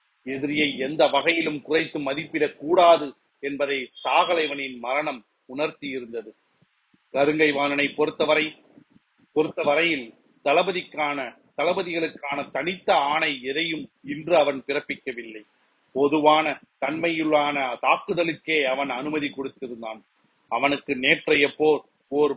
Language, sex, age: Tamil, male, 40-59